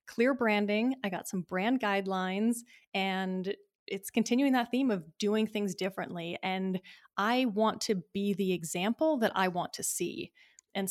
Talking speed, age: 160 wpm, 20-39